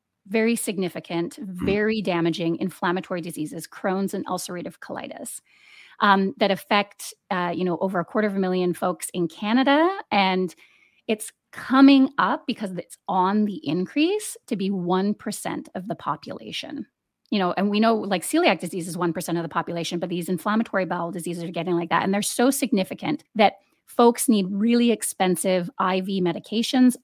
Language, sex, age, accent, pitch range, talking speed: English, female, 30-49, American, 180-230 Hz, 160 wpm